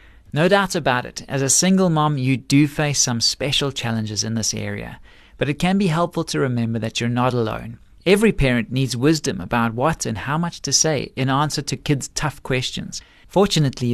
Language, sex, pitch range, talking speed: English, male, 120-160 Hz, 200 wpm